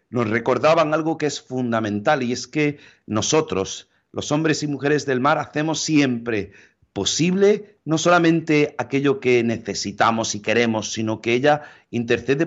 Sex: male